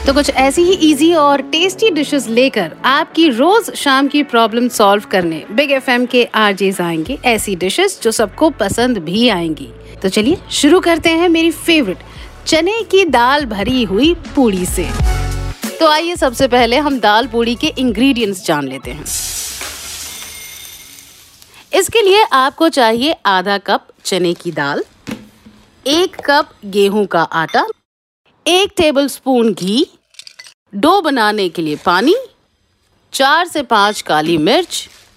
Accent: native